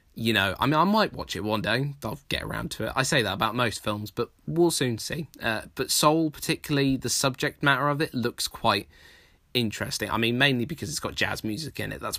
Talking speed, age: 235 wpm, 10-29